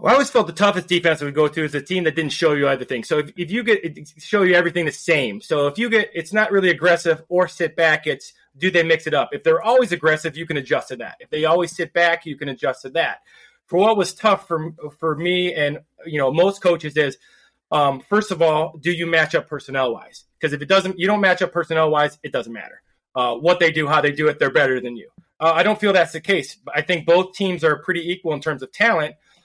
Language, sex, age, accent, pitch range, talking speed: English, male, 30-49, American, 155-185 Hz, 265 wpm